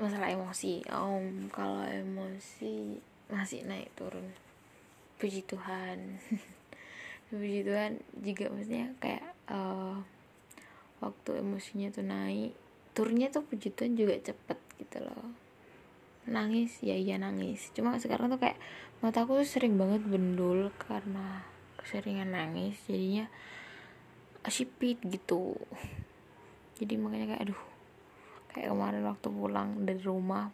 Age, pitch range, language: 10-29, 185-220 Hz, Indonesian